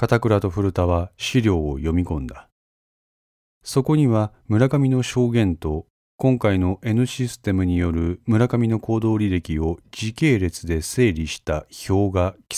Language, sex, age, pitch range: Japanese, male, 40-59, 85-120 Hz